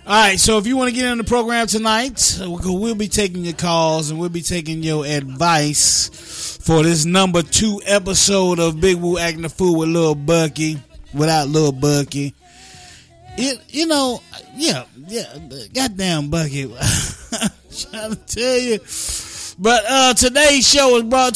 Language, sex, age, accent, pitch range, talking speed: English, male, 30-49, American, 140-195 Hz, 160 wpm